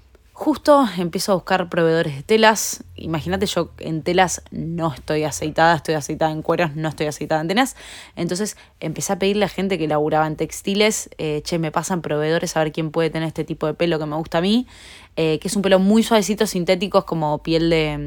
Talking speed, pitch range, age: 215 wpm, 160-195 Hz, 20-39